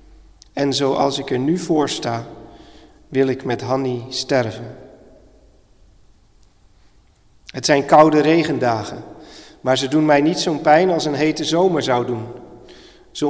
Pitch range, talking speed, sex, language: 130-155 Hz, 135 wpm, male, Dutch